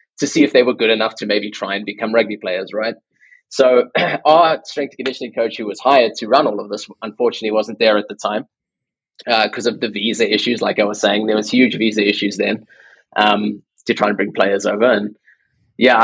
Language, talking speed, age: English, 220 wpm, 20-39